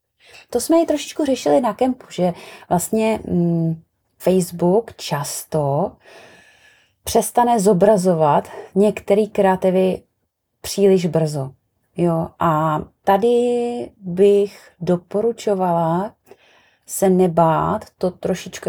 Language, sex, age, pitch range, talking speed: Czech, female, 30-49, 170-210 Hz, 85 wpm